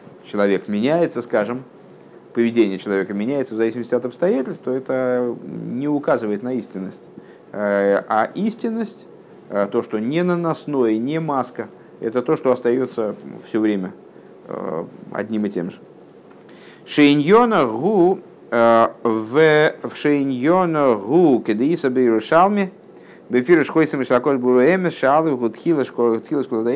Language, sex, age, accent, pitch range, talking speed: Russian, male, 50-69, native, 110-160 Hz, 90 wpm